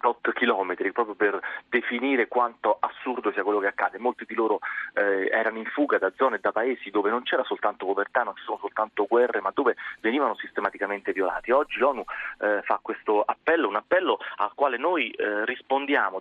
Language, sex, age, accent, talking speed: Italian, male, 30-49, native, 185 wpm